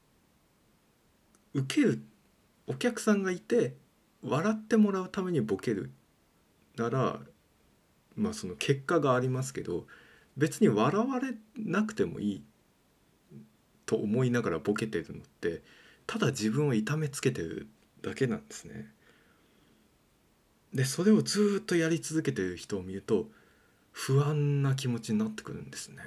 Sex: male